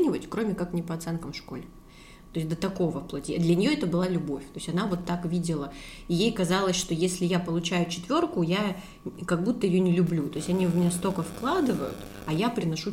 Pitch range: 165-195 Hz